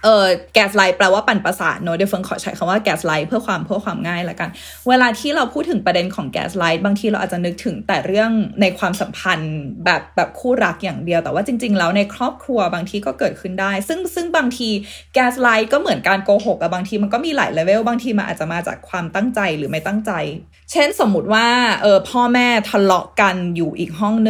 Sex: female